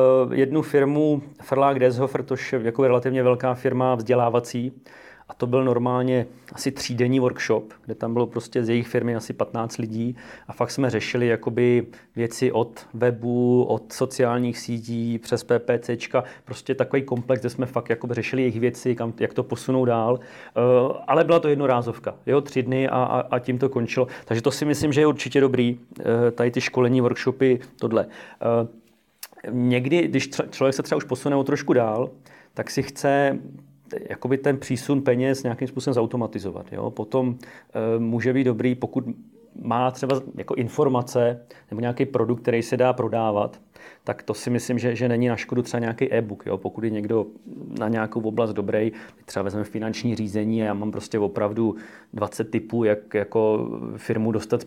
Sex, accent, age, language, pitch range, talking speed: male, native, 30-49, Czech, 115-130 Hz, 170 wpm